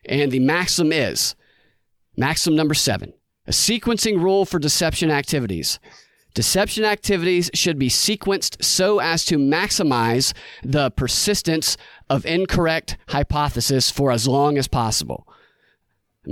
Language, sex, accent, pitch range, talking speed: English, male, American, 135-180 Hz, 120 wpm